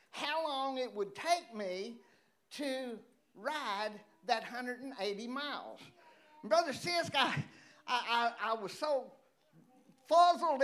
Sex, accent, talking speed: male, American, 115 wpm